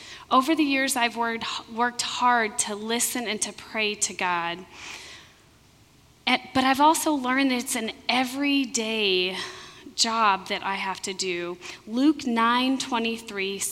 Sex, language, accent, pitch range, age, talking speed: female, English, American, 195-260 Hz, 30-49, 125 wpm